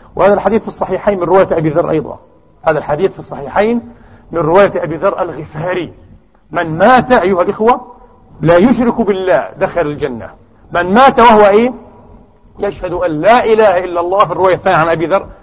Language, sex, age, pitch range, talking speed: Arabic, male, 40-59, 145-195 Hz, 165 wpm